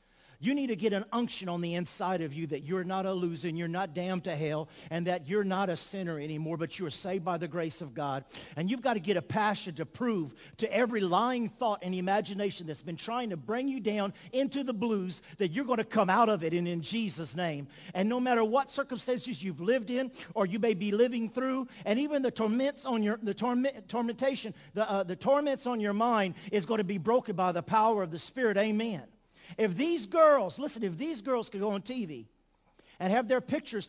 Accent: American